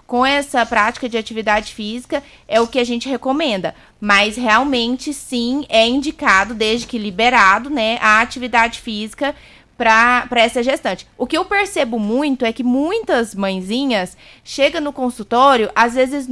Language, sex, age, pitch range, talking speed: Portuguese, female, 20-39, 225-270 Hz, 150 wpm